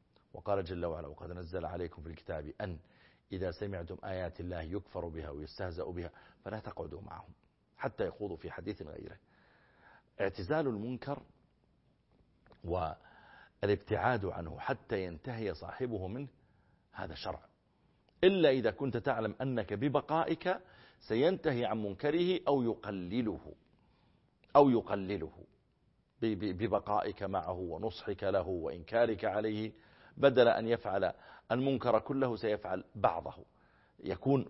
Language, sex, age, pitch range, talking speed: Arabic, male, 50-69, 90-120 Hz, 110 wpm